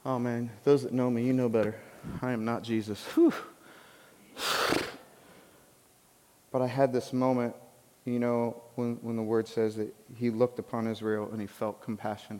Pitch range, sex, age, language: 110-135 Hz, male, 30-49, English